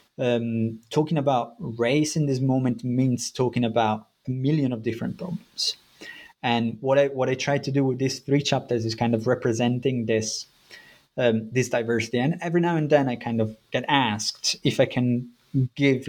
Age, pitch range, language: 20-39, 115-140 Hz, English